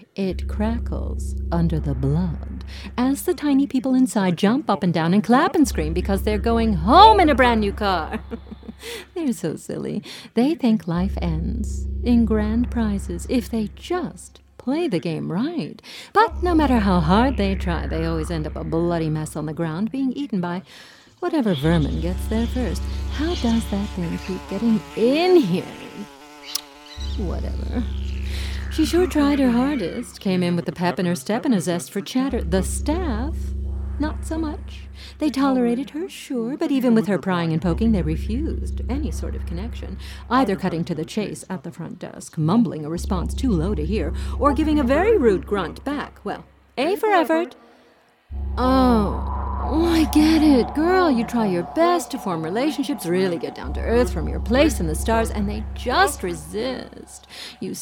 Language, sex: English, female